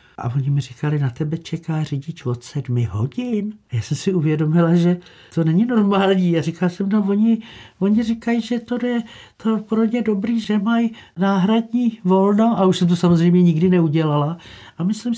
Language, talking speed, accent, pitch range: Czech, 180 wpm, native, 125-200 Hz